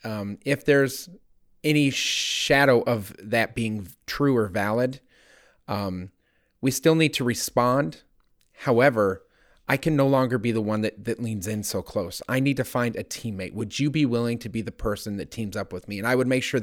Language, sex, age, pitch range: English, male, 30-49, 115-140 Hz